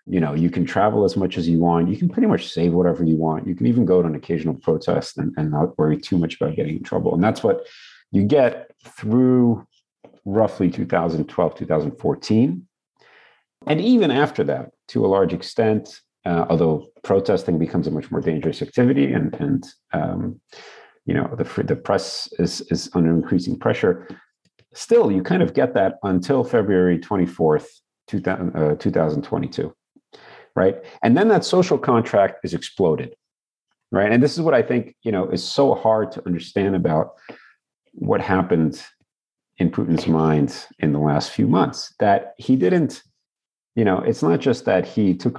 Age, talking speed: 40-59, 170 wpm